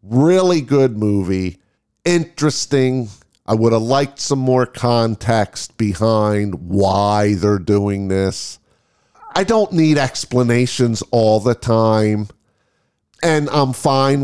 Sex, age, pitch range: male, 50-69, 110-150 Hz